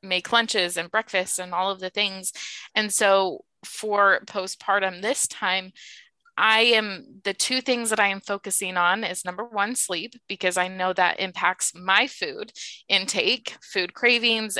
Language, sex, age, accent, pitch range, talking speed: English, female, 20-39, American, 185-215 Hz, 160 wpm